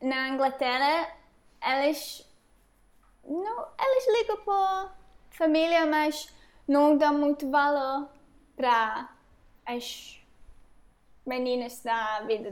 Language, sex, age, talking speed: English, female, 10-29, 85 wpm